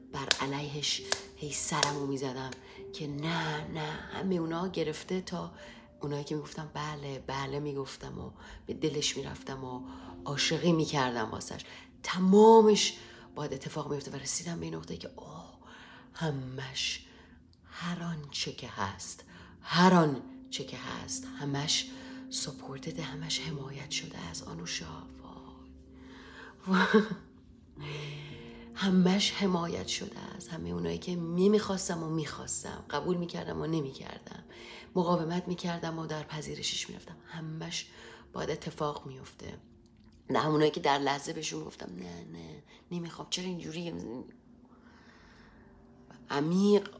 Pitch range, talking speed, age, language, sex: 125-170 Hz, 110 wpm, 30-49, Persian, female